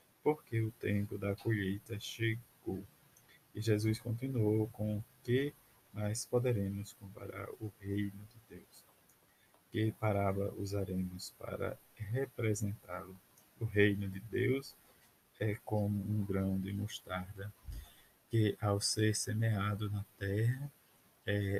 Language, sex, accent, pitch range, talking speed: Portuguese, male, Brazilian, 100-115 Hz, 115 wpm